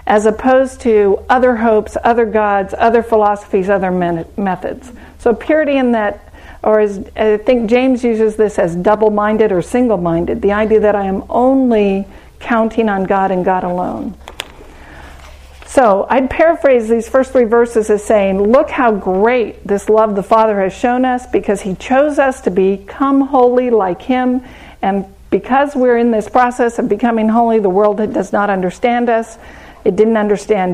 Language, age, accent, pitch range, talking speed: English, 50-69, American, 200-250 Hz, 160 wpm